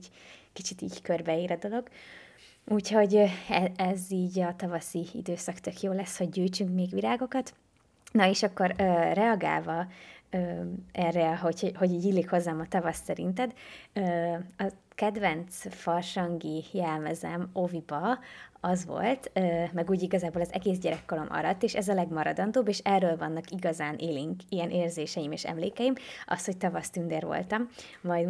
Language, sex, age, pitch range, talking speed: Hungarian, female, 20-39, 170-200 Hz, 135 wpm